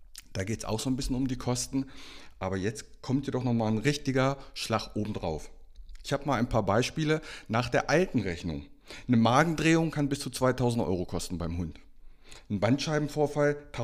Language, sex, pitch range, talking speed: German, male, 90-130 Hz, 180 wpm